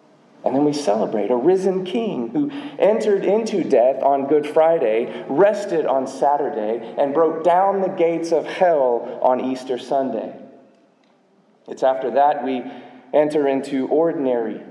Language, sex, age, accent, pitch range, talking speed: English, male, 30-49, American, 130-175 Hz, 140 wpm